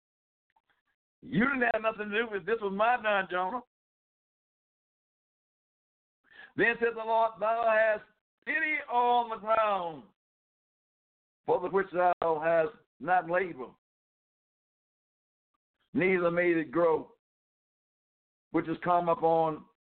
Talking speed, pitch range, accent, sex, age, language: 110 wpm, 180-235 Hz, American, male, 60-79, English